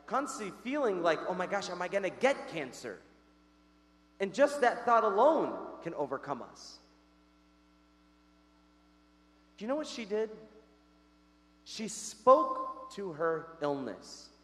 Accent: American